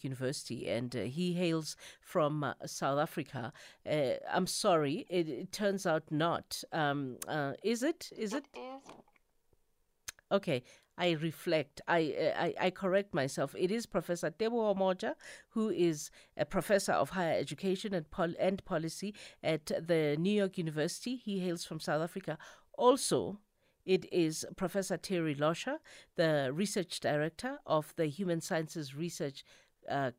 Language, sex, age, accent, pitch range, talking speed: English, female, 50-69, South African, 150-195 Hz, 145 wpm